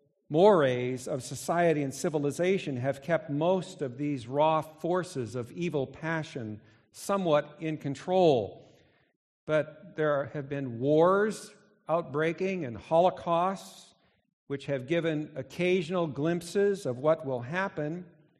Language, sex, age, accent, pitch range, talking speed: English, male, 50-69, American, 140-175 Hz, 115 wpm